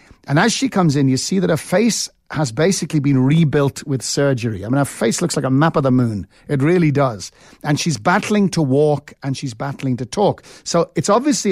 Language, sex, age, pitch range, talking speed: English, male, 50-69, 135-180 Hz, 225 wpm